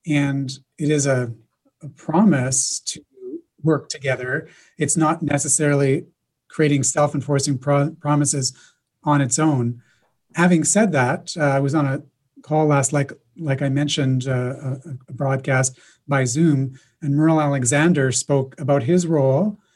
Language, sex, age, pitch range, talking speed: French, male, 30-49, 135-160 Hz, 140 wpm